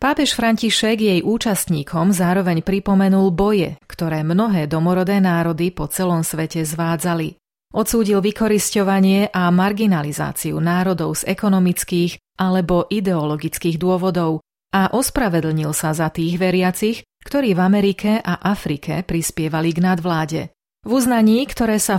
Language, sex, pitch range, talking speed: Slovak, female, 165-200 Hz, 115 wpm